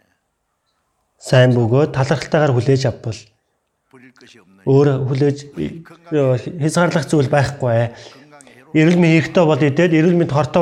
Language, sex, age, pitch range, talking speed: English, male, 30-49, 130-160 Hz, 90 wpm